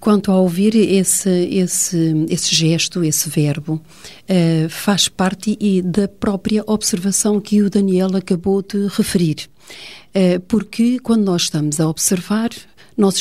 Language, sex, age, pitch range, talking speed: Portuguese, female, 40-59, 170-215 Hz, 125 wpm